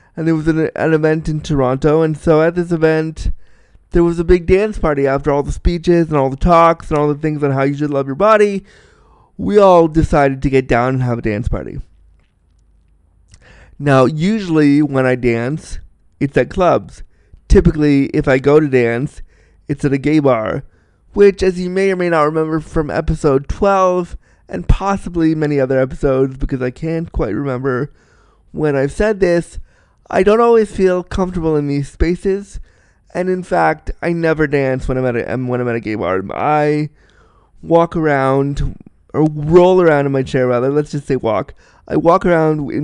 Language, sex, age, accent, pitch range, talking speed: English, male, 20-39, American, 130-165 Hz, 185 wpm